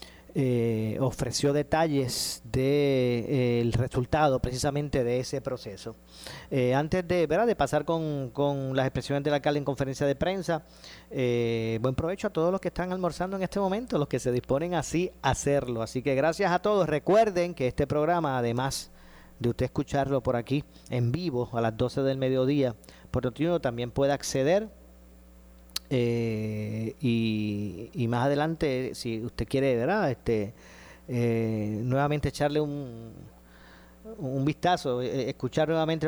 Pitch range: 120-150 Hz